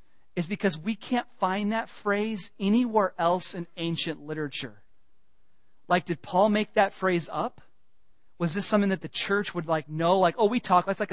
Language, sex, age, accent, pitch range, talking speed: English, male, 30-49, American, 165-210 Hz, 185 wpm